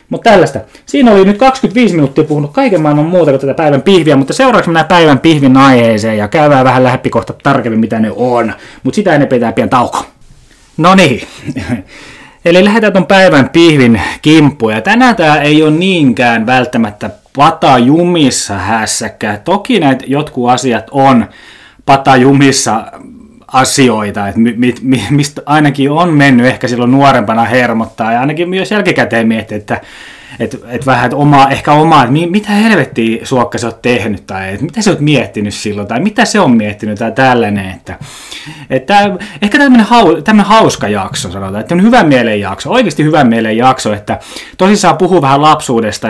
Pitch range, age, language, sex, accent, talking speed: 115-155 Hz, 20-39, Finnish, male, native, 165 wpm